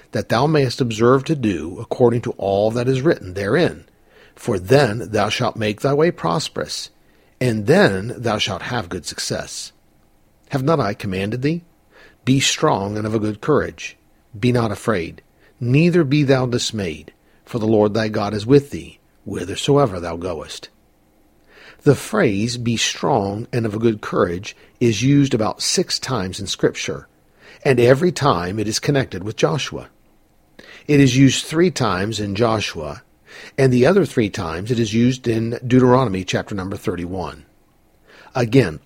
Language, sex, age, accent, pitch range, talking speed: English, male, 50-69, American, 105-135 Hz, 160 wpm